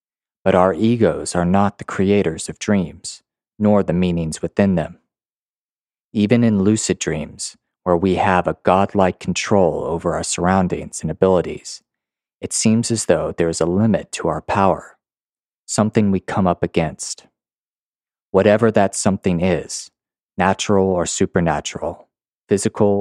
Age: 30-49